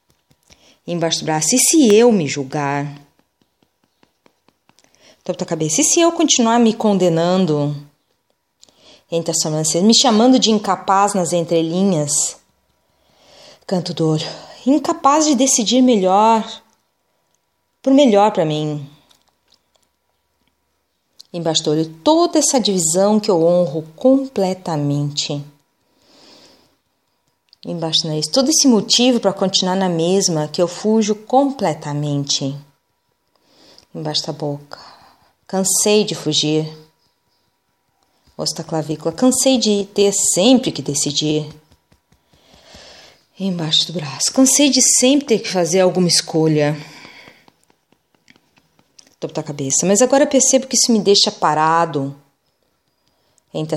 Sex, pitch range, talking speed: female, 155-225 Hz, 105 wpm